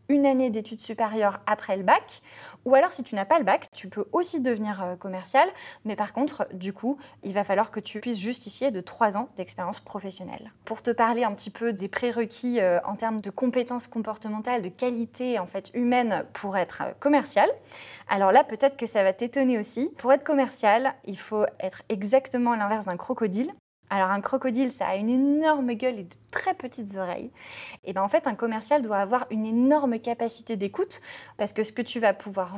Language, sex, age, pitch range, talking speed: French, female, 20-39, 195-260 Hz, 200 wpm